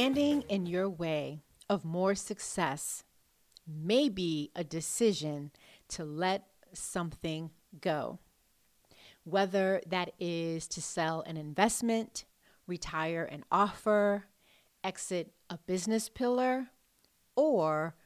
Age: 40-59